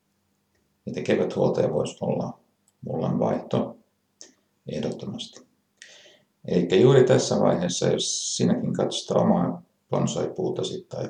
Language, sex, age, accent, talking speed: Finnish, male, 60-79, native, 90 wpm